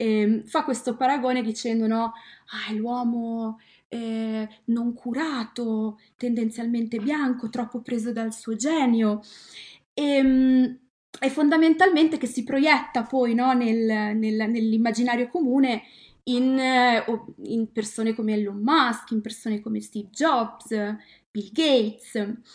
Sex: female